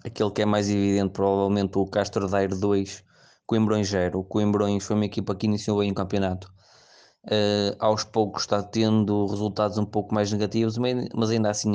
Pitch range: 100-110 Hz